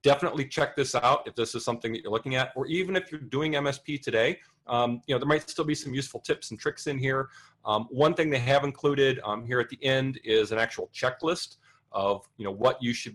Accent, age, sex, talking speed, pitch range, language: American, 40-59, male, 245 wpm, 110-140 Hz, English